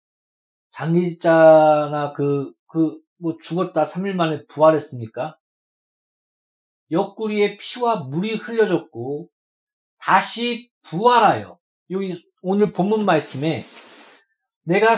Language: Korean